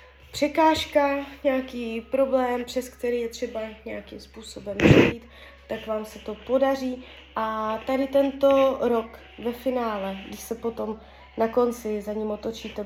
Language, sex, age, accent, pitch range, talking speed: Czech, female, 20-39, native, 205-230 Hz, 135 wpm